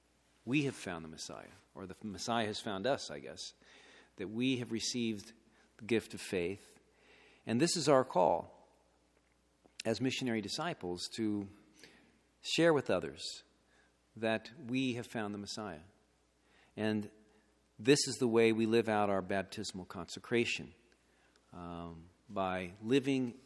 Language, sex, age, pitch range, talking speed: English, male, 50-69, 95-120 Hz, 135 wpm